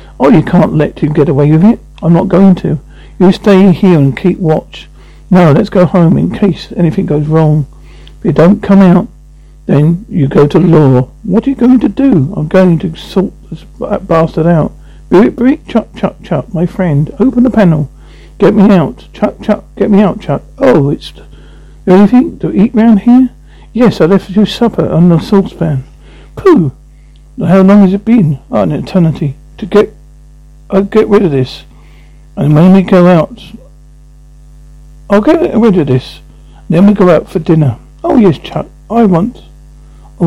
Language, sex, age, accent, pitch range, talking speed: English, male, 50-69, British, 150-200 Hz, 185 wpm